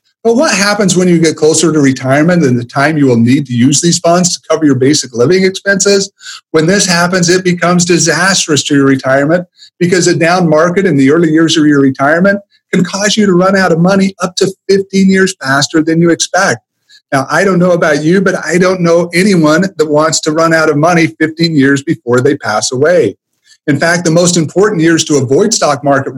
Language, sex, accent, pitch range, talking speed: English, male, American, 140-180 Hz, 220 wpm